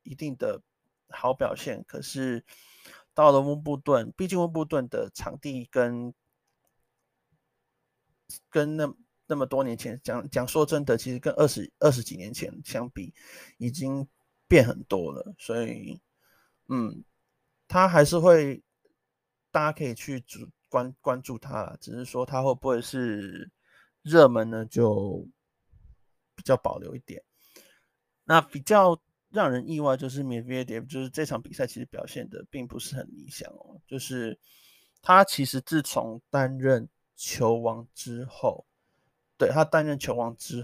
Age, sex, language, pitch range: 30-49, male, Chinese, 120-155 Hz